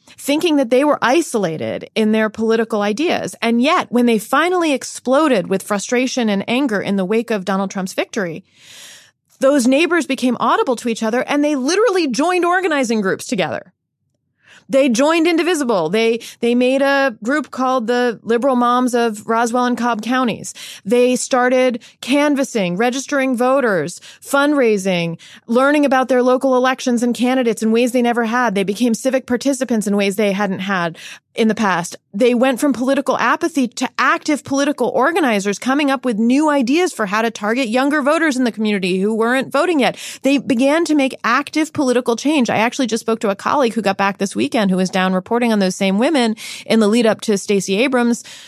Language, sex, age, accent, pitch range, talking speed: English, female, 30-49, American, 215-275 Hz, 185 wpm